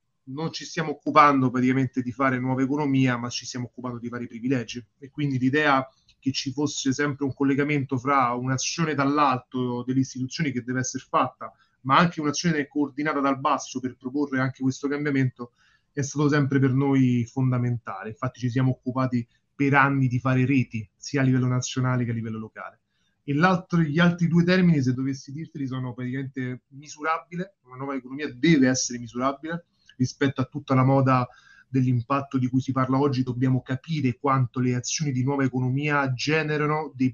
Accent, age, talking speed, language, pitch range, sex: native, 30-49, 175 wpm, Italian, 130-145 Hz, male